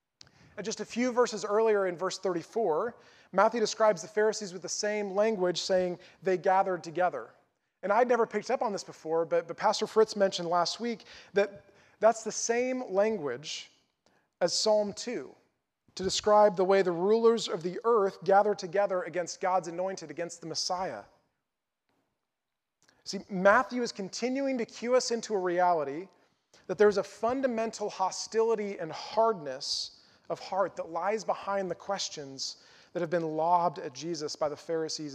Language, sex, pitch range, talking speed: English, male, 175-220 Hz, 160 wpm